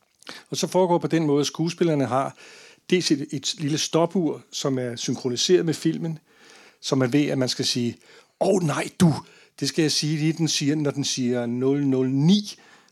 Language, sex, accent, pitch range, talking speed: Danish, male, native, 135-175 Hz, 190 wpm